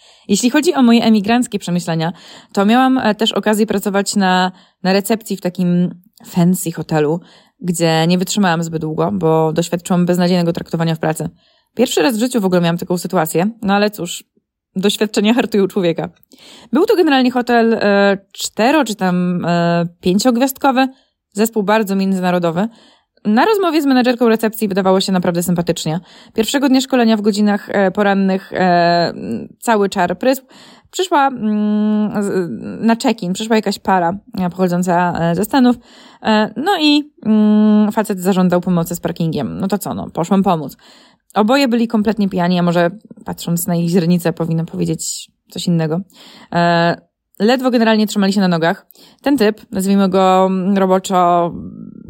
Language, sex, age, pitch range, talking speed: Polish, female, 20-39, 180-230 Hz, 145 wpm